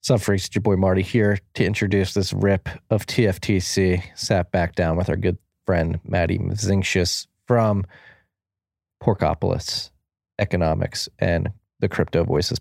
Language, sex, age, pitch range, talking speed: English, male, 20-39, 90-105 Hz, 130 wpm